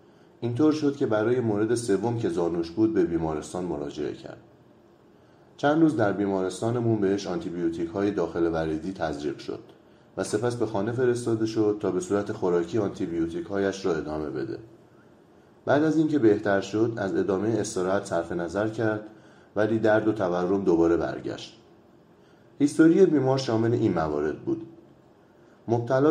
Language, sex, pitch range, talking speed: Persian, male, 95-120 Hz, 150 wpm